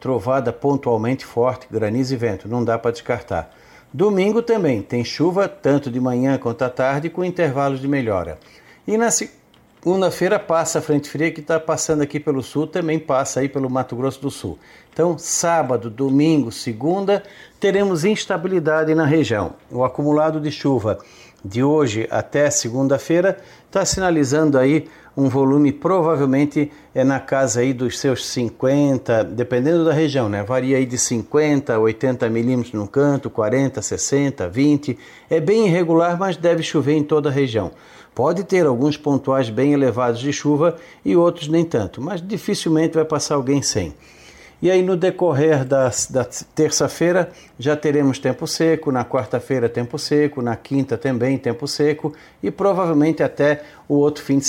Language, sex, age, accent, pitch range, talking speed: Portuguese, male, 60-79, Brazilian, 130-160 Hz, 160 wpm